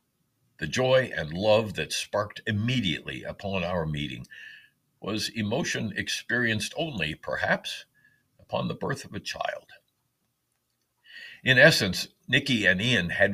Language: English